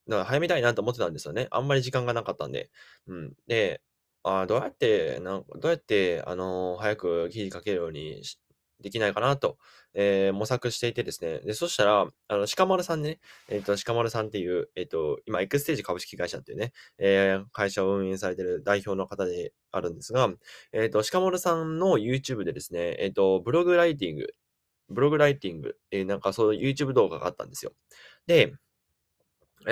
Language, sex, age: Japanese, male, 20-39